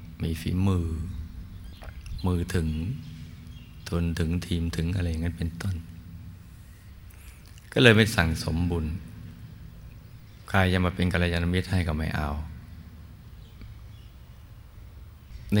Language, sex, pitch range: Thai, male, 80-95 Hz